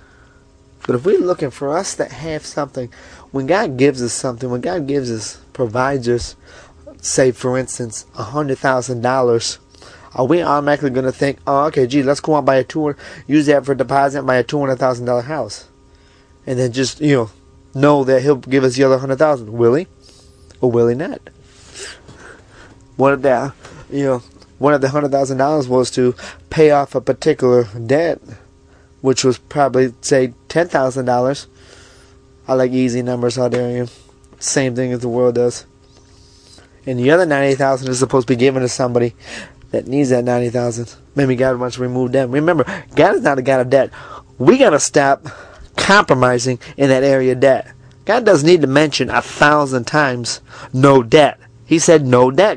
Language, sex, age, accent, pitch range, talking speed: English, male, 30-49, American, 125-140 Hz, 175 wpm